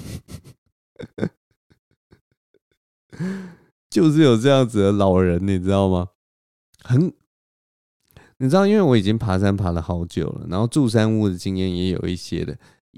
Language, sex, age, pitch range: Chinese, male, 20-39, 95-135 Hz